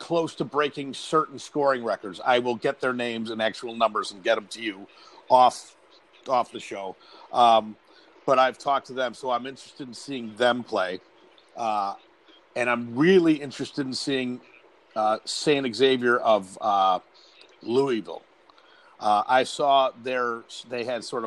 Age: 50-69